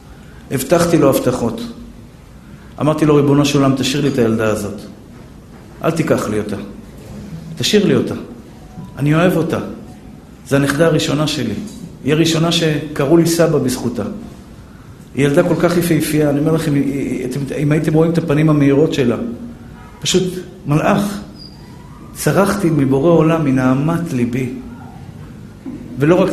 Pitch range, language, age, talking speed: 125-155 Hz, Hebrew, 50-69, 130 wpm